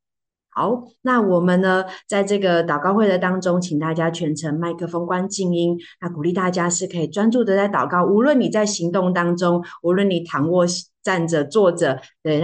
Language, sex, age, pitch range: Chinese, female, 20-39, 165-205 Hz